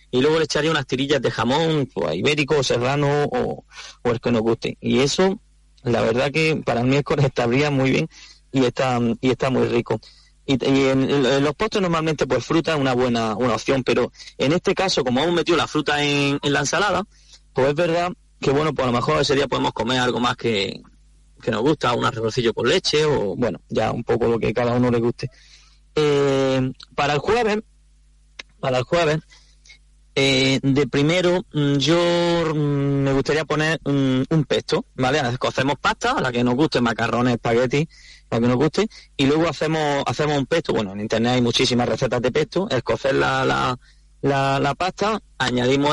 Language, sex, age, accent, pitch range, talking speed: Spanish, male, 30-49, Spanish, 125-155 Hz, 190 wpm